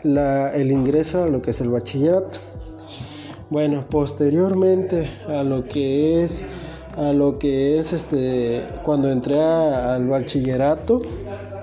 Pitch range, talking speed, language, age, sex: 140-175 Hz, 125 wpm, Spanish, 30-49, male